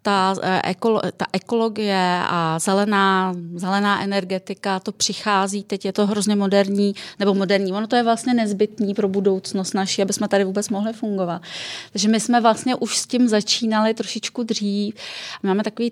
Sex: female